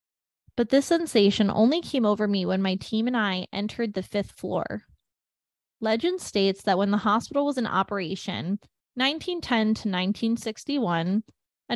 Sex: female